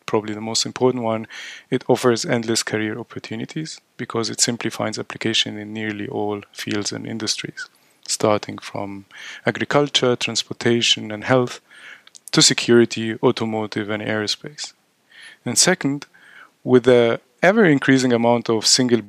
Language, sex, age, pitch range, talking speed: English, male, 20-39, 110-130 Hz, 130 wpm